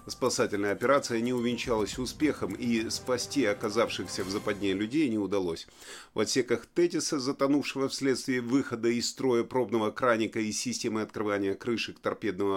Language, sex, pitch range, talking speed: Russian, male, 100-130 Hz, 135 wpm